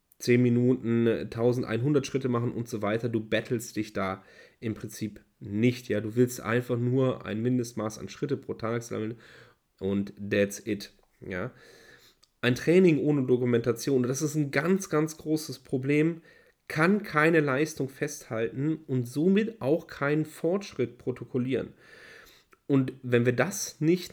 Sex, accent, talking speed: male, German, 135 wpm